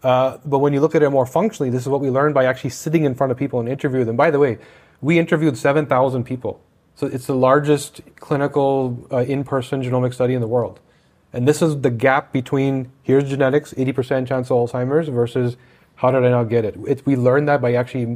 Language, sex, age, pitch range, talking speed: English, male, 30-49, 125-145 Hz, 220 wpm